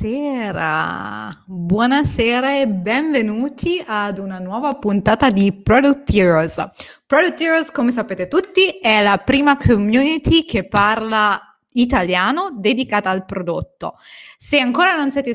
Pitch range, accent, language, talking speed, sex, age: 185-270 Hz, native, Italian, 115 wpm, female, 20-39